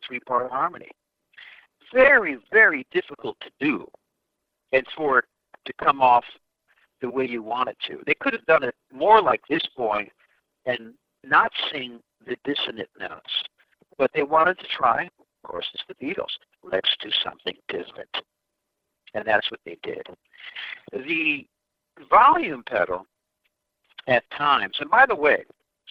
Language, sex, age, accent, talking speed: English, male, 60-79, American, 145 wpm